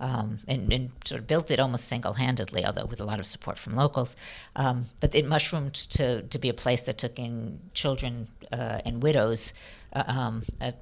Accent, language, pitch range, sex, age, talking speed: American, English, 115-155 Hz, female, 50-69, 200 wpm